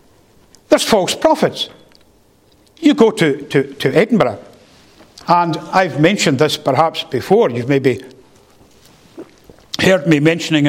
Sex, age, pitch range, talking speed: male, 60-79, 160-245 Hz, 105 wpm